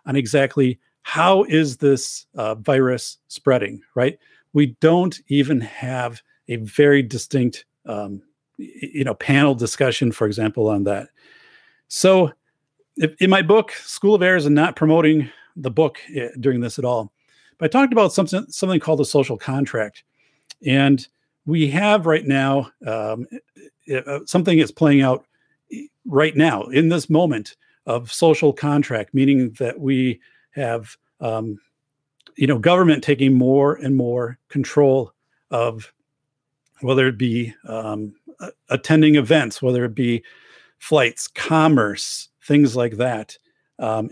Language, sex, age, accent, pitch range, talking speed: English, male, 50-69, American, 120-155 Hz, 135 wpm